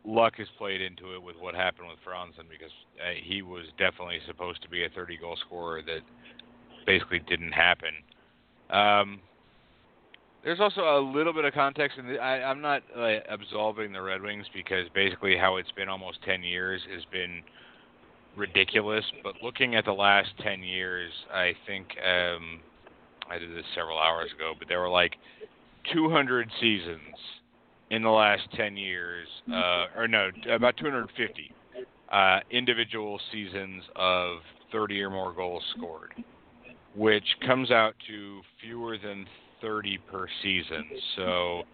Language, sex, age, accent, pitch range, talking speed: English, male, 40-59, American, 90-110 Hz, 145 wpm